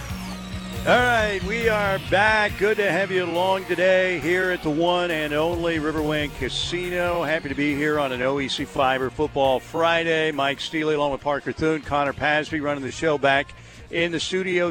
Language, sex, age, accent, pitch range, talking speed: English, male, 50-69, American, 145-175 Hz, 180 wpm